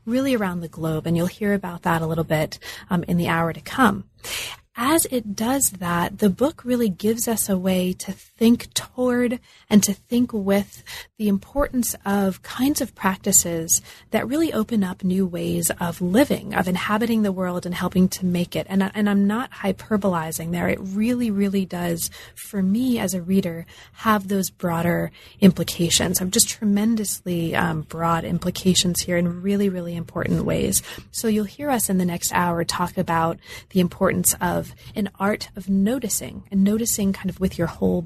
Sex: female